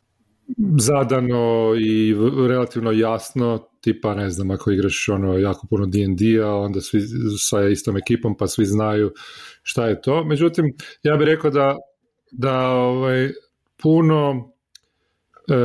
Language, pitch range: Croatian, 105-140 Hz